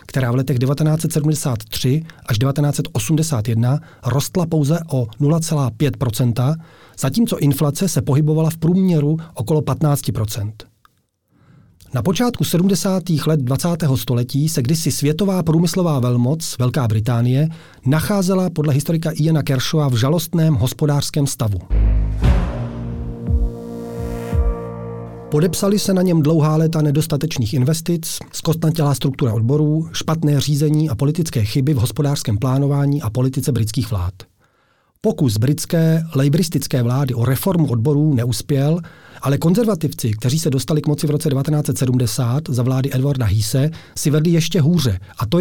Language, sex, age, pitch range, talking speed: Czech, male, 40-59, 125-160 Hz, 120 wpm